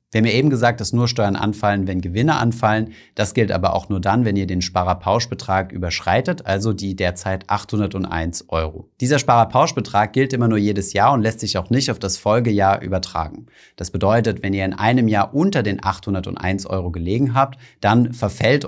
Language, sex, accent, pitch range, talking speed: German, male, German, 95-120 Hz, 190 wpm